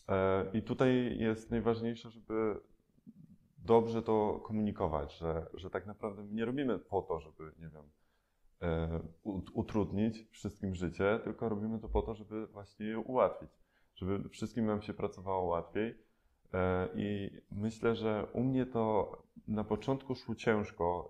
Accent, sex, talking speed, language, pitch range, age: native, male, 135 wpm, Polish, 90-110 Hz, 20-39